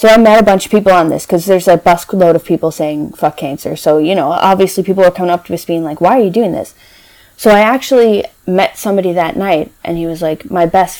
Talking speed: 260 wpm